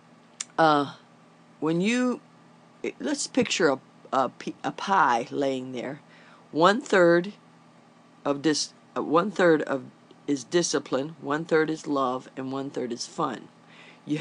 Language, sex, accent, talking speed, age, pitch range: English, female, American, 125 wpm, 50-69, 145-175 Hz